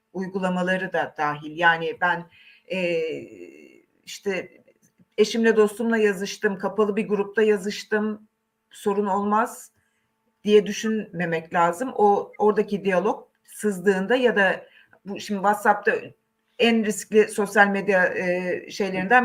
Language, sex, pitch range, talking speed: Turkish, female, 185-225 Hz, 105 wpm